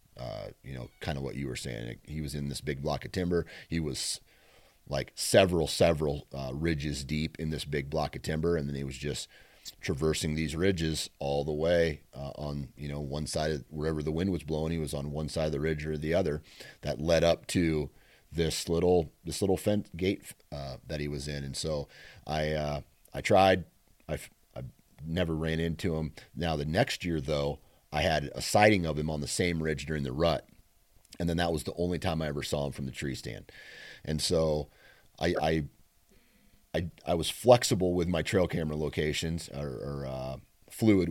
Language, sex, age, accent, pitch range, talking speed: English, male, 30-49, American, 75-85 Hz, 205 wpm